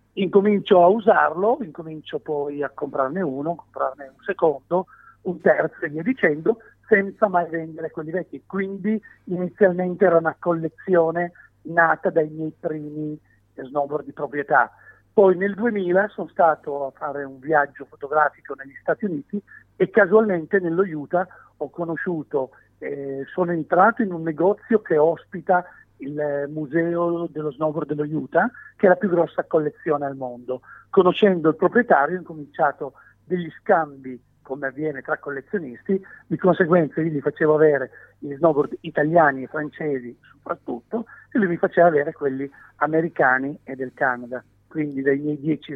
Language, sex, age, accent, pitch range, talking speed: Italian, male, 50-69, native, 140-180 Hz, 145 wpm